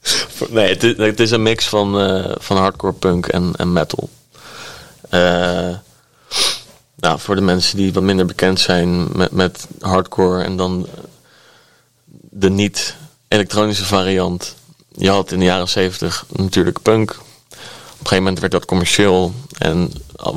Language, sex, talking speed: English, male, 140 wpm